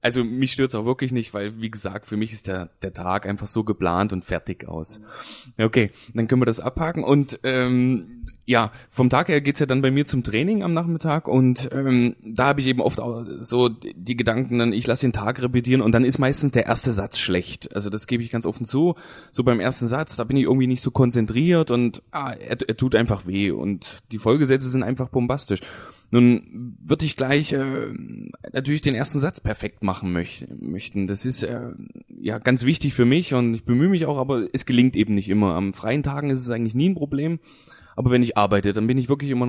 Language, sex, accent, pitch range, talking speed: German, male, German, 110-135 Hz, 225 wpm